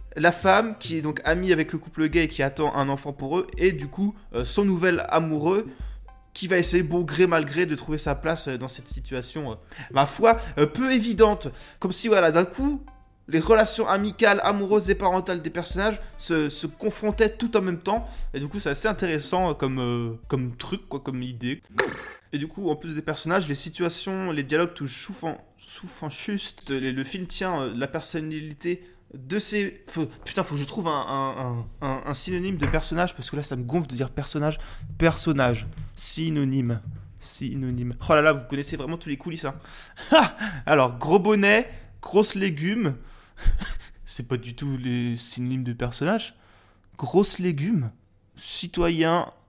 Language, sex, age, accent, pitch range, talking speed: French, male, 20-39, French, 135-185 Hz, 180 wpm